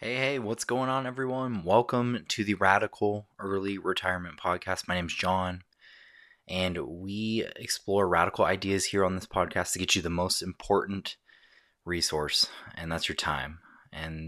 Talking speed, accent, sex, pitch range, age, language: 155 wpm, American, male, 80-105 Hz, 20-39, English